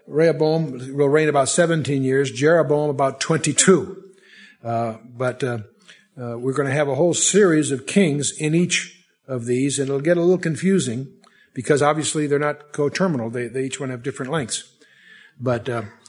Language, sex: English, male